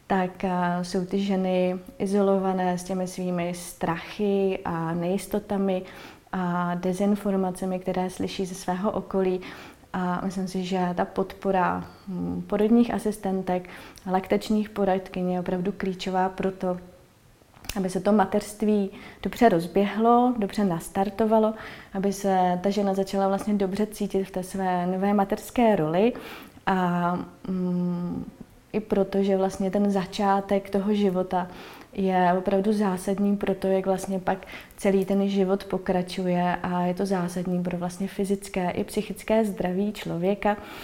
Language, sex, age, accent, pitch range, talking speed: Czech, female, 20-39, native, 180-200 Hz, 130 wpm